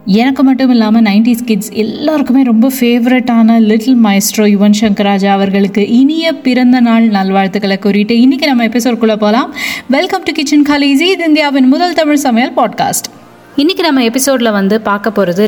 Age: 20-39